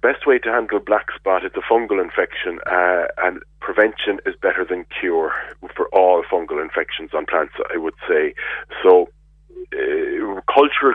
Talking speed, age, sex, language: 160 wpm, 30-49, male, English